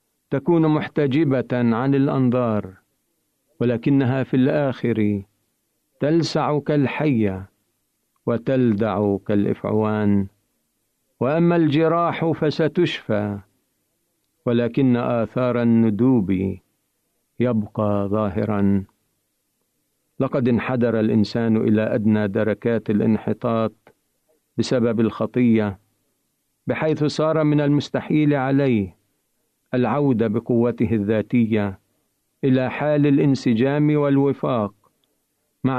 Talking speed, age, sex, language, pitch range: 70 wpm, 50-69, male, Arabic, 110-140 Hz